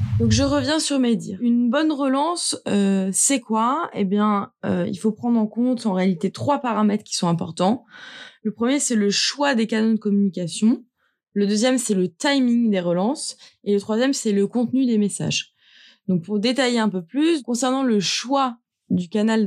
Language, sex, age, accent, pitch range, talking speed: French, female, 20-39, French, 200-245 Hz, 190 wpm